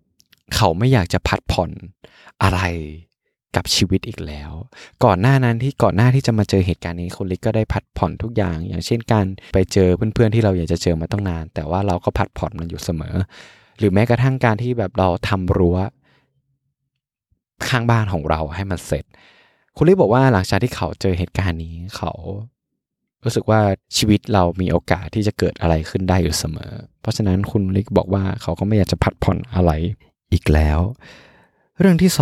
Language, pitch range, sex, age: Thai, 90-115 Hz, male, 20-39